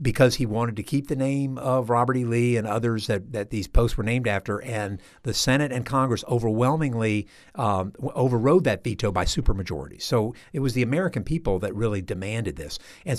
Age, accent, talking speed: 60-79, American, 195 wpm